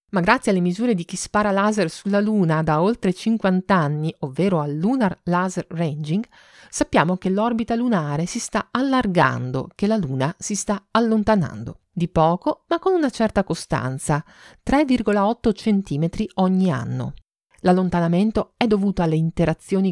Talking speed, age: 145 wpm, 40-59